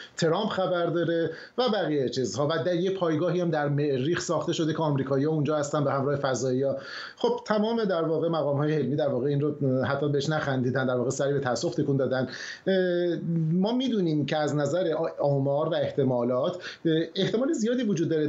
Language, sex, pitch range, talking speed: Persian, male, 140-180 Hz, 175 wpm